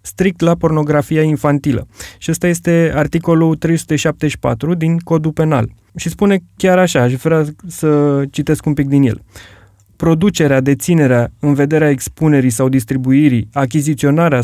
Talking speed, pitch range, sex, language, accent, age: 135 wpm, 130-170 Hz, male, Romanian, native, 20-39